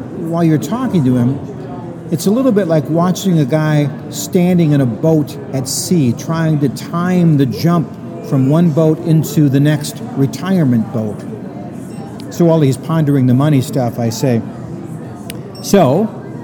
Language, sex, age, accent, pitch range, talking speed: English, male, 50-69, American, 135-175 Hz, 155 wpm